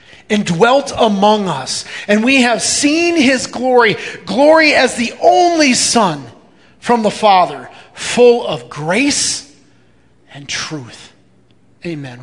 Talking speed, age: 120 wpm, 30-49